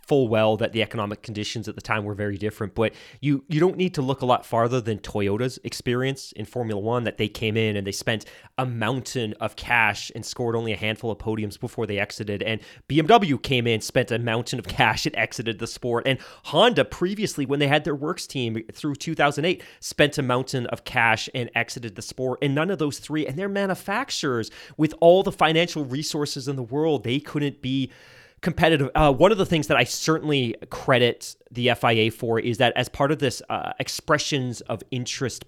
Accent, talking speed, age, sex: American, 210 wpm, 30-49, male